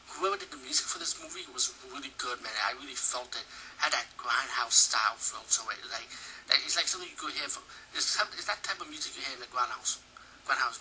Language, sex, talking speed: English, male, 215 wpm